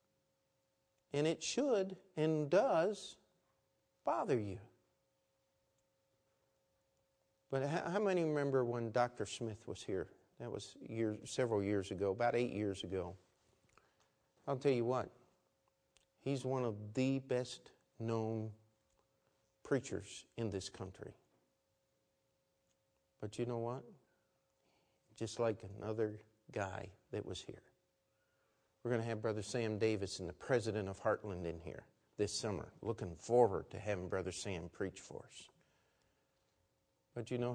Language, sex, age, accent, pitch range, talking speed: English, male, 50-69, American, 95-120 Hz, 125 wpm